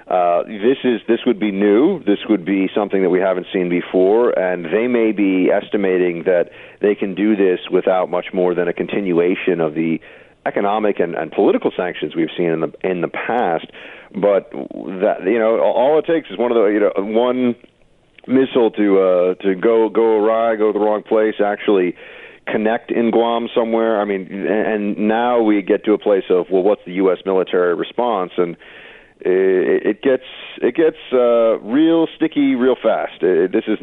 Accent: American